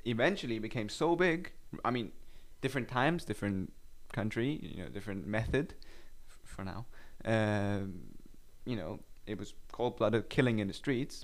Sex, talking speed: male, 145 wpm